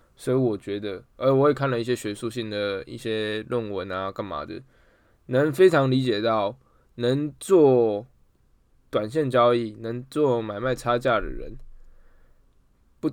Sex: male